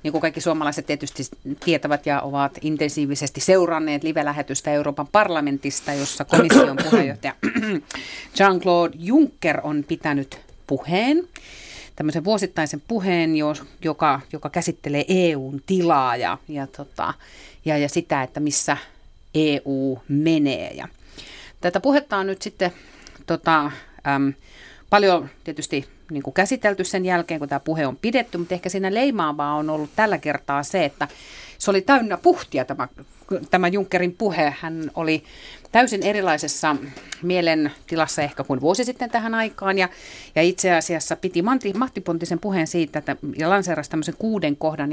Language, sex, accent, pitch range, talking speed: Finnish, female, native, 145-180 Hz, 135 wpm